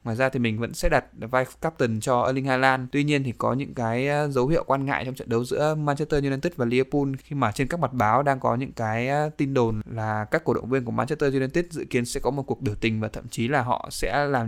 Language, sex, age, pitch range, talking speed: Vietnamese, male, 20-39, 115-140 Hz, 270 wpm